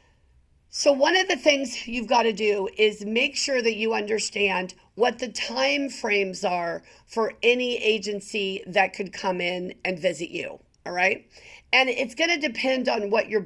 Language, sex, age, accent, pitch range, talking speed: English, female, 50-69, American, 200-270 Hz, 175 wpm